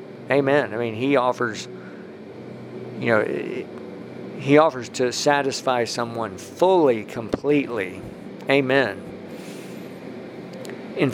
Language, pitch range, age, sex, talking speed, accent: English, 120-145 Hz, 50-69, male, 85 wpm, American